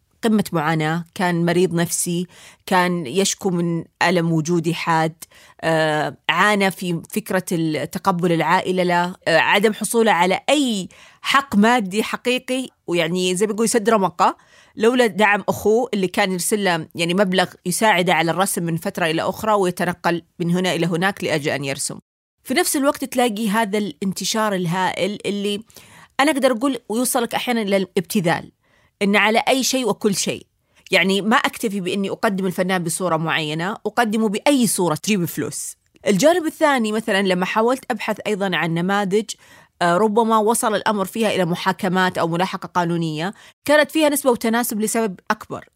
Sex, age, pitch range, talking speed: female, 30-49, 175-225 Hz, 145 wpm